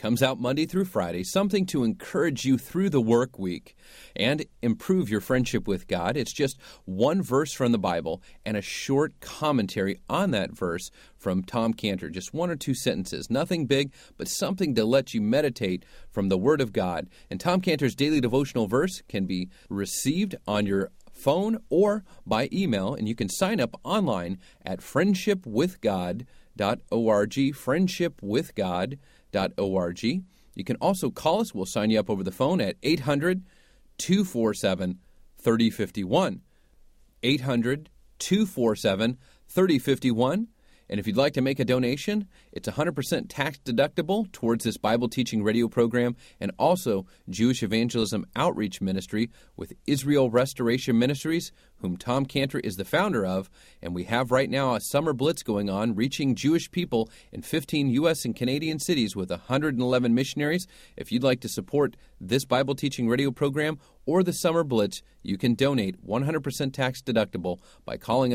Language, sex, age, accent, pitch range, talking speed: English, male, 40-59, American, 110-155 Hz, 155 wpm